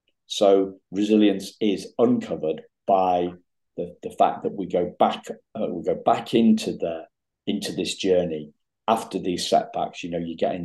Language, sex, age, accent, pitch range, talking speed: English, male, 50-69, British, 85-110 Hz, 160 wpm